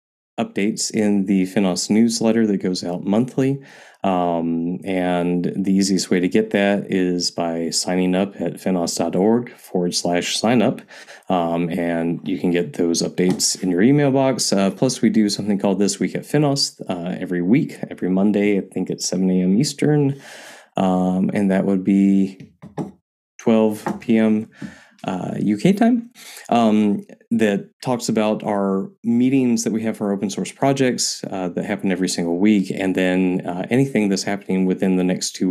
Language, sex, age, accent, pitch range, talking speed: English, male, 20-39, American, 90-110 Hz, 165 wpm